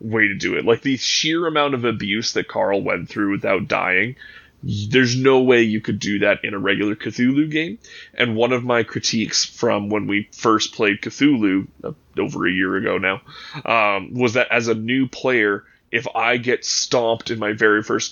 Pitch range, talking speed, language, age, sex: 105-130 Hz, 200 wpm, English, 20-39, male